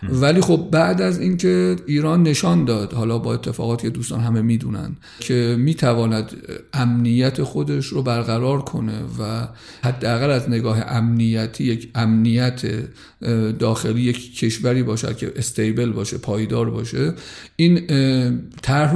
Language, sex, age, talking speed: Persian, male, 50-69, 125 wpm